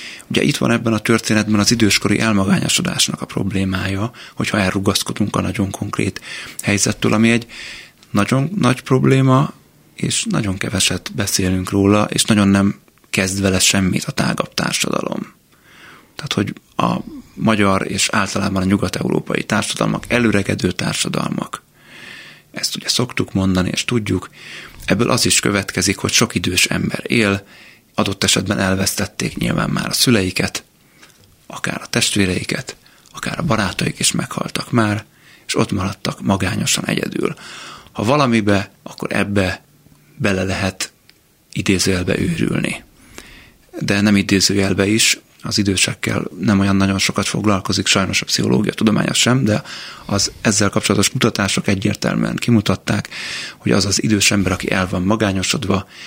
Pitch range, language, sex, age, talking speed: 95-110 Hz, Hungarian, male, 30-49, 130 wpm